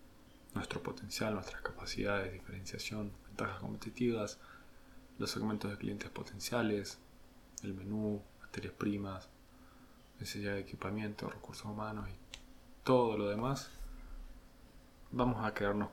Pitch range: 95-105 Hz